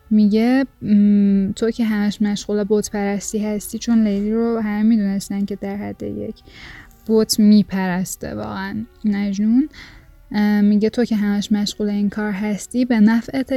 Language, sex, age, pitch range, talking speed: Persian, female, 10-29, 205-230 Hz, 135 wpm